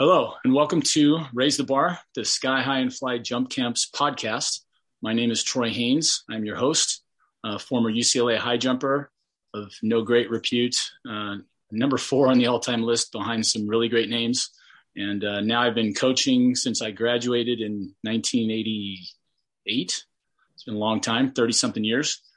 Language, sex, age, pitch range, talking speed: English, male, 30-49, 110-130 Hz, 165 wpm